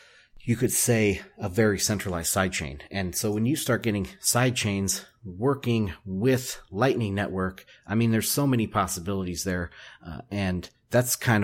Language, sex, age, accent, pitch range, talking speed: English, male, 30-49, American, 95-120 Hz, 150 wpm